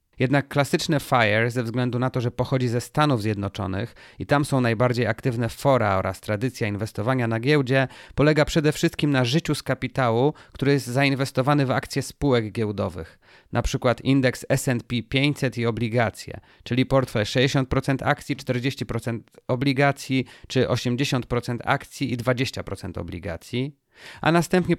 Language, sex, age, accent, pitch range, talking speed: Polish, male, 30-49, native, 115-140 Hz, 140 wpm